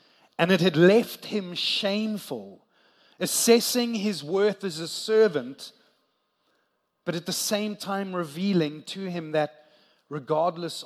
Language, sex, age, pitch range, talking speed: English, male, 30-49, 145-180 Hz, 120 wpm